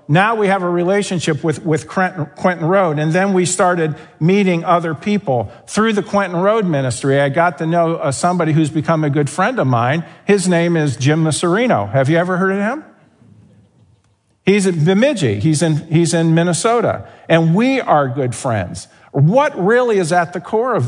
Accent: American